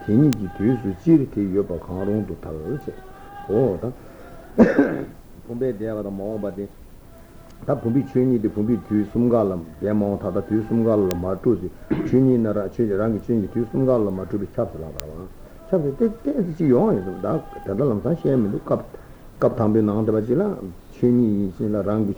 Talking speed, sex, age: 90 wpm, male, 60-79